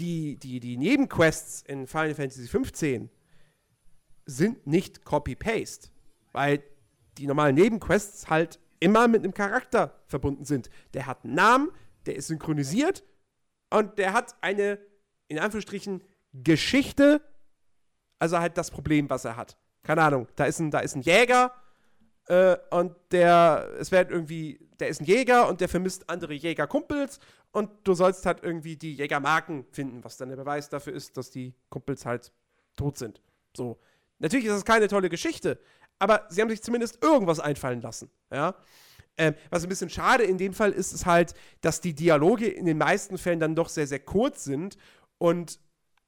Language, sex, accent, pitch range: German, male, German, 145-195 Hz